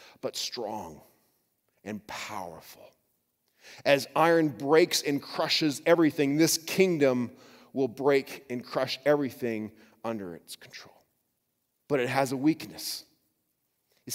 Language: English